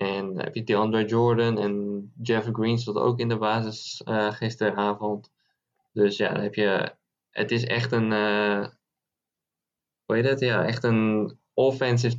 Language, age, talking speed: Dutch, 20-39, 165 wpm